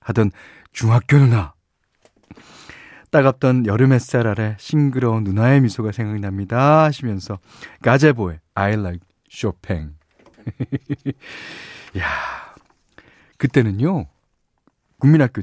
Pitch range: 105-155 Hz